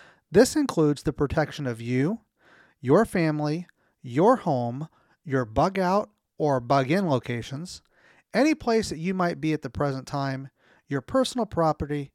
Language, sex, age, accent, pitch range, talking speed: English, male, 40-59, American, 135-185 Hz, 140 wpm